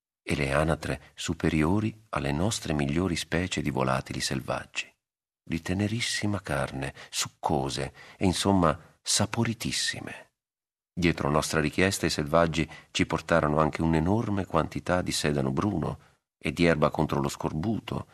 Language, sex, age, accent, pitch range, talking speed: Italian, male, 40-59, native, 75-90 Hz, 120 wpm